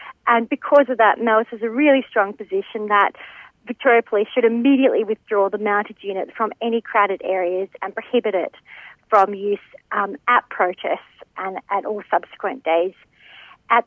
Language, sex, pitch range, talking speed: English, female, 210-260 Hz, 160 wpm